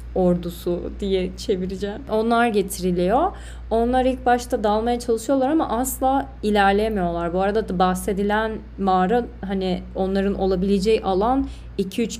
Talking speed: 115 wpm